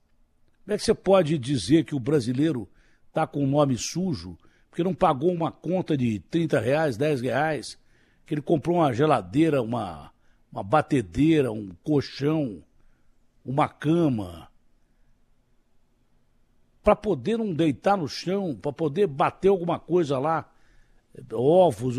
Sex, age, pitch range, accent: male, 60-79, 145-195 Hz, Brazilian